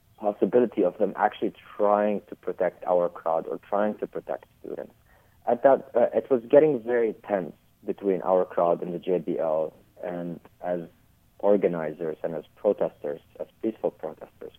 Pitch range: 90-115 Hz